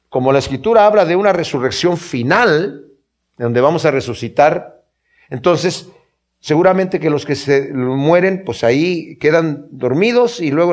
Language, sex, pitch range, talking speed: Spanish, male, 135-190 Hz, 140 wpm